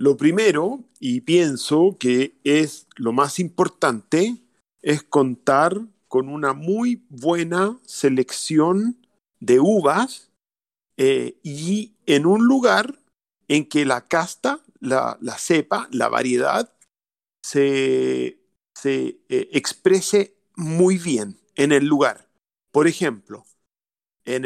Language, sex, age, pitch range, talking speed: Portuguese, male, 50-69, 135-190 Hz, 110 wpm